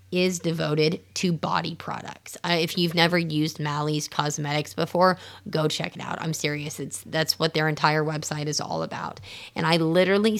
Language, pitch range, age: English, 150-185 Hz, 30-49